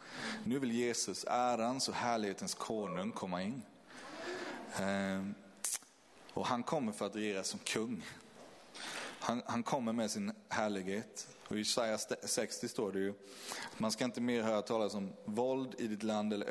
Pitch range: 105-130 Hz